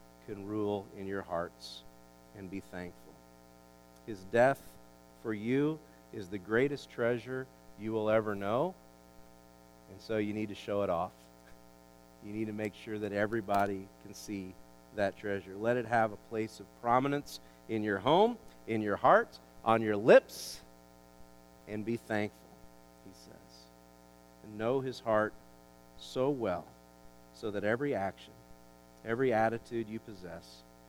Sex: male